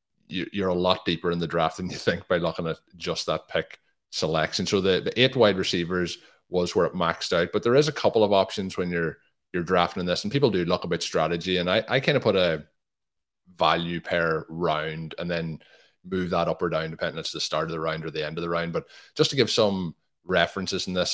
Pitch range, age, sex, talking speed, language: 80-90 Hz, 20-39, male, 245 wpm, English